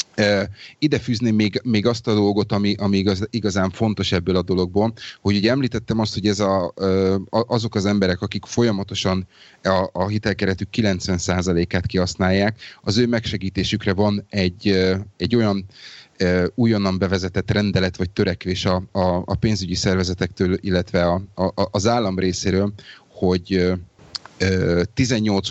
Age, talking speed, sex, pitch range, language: 30-49, 120 wpm, male, 90-105 Hz, Hungarian